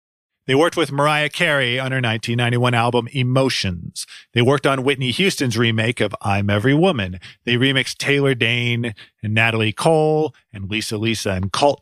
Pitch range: 110-140 Hz